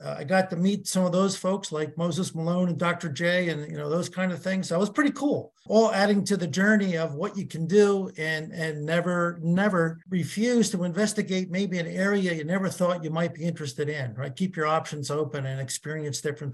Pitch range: 150-190 Hz